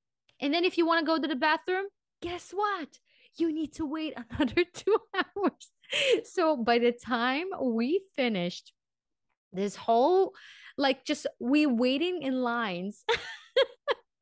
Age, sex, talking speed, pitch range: 20-39, female, 140 wpm, 170-265 Hz